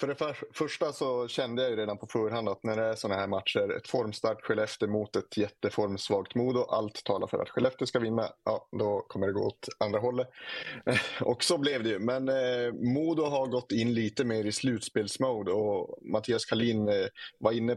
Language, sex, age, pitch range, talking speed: Swedish, male, 30-49, 105-120 Hz, 200 wpm